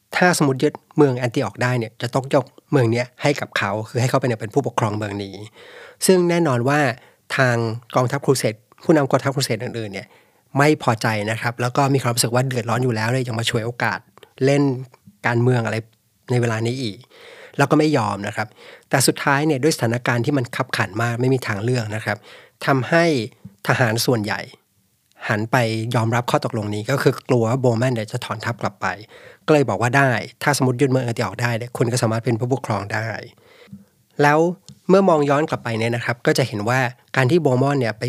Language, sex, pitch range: Thai, male, 115-140 Hz